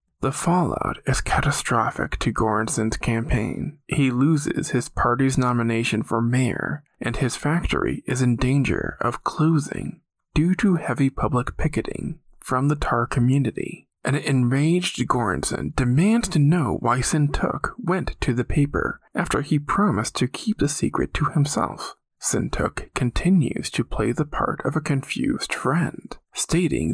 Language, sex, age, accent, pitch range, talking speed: English, male, 20-39, American, 125-155 Hz, 140 wpm